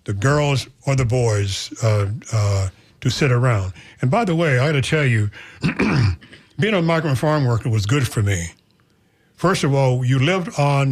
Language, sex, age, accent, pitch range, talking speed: English, male, 60-79, American, 115-160 Hz, 185 wpm